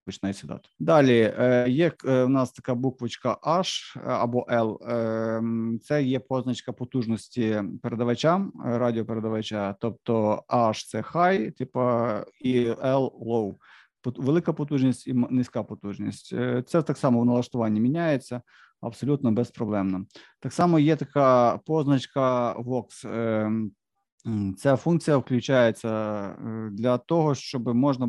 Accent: native